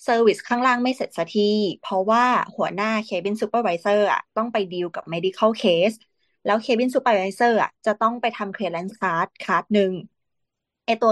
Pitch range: 185-235 Hz